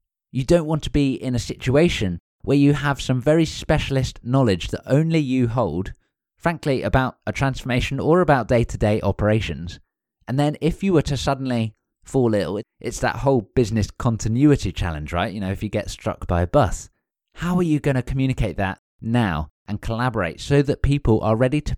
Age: 20-39